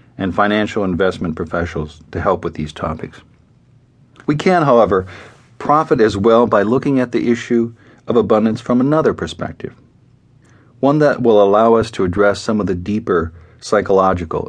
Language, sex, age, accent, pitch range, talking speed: English, male, 50-69, American, 95-125 Hz, 155 wpm